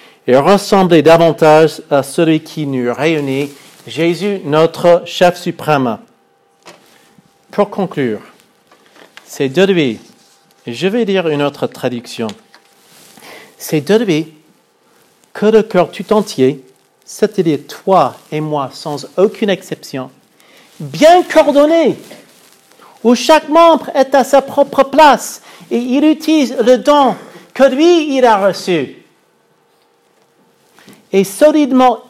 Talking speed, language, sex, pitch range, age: 115 wpm, French, male, 170-240 Hz, 50-69